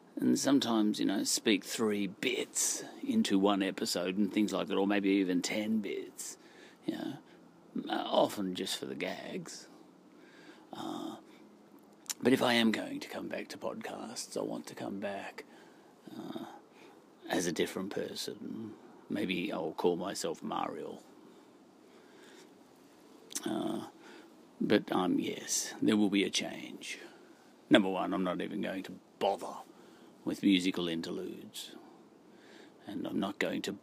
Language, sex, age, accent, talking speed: English, male, 40-59, British, 135 wpm